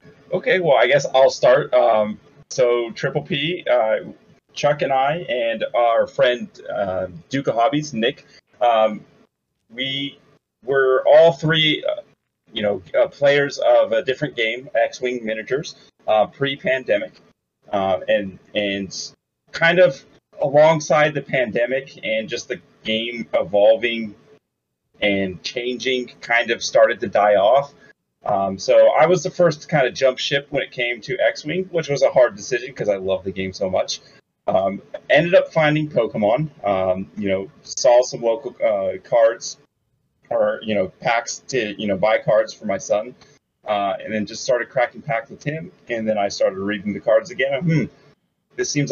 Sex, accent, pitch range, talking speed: male, American, 105-160 Hz, 165 wpm